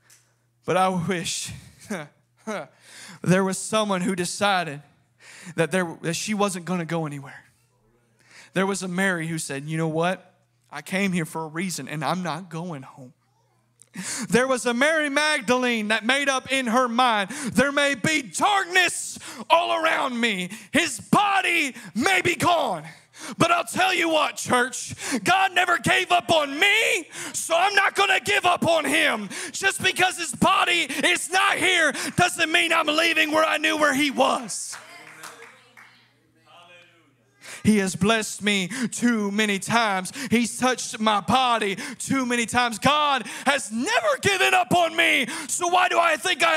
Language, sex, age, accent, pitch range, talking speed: English, male, 30-49, American, 200-330 Hz, 160 wpm